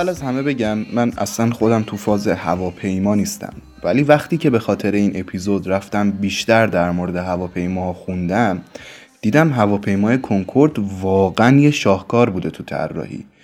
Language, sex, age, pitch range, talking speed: Persian, male, 20-39, 95-115 Hz, 145 wpm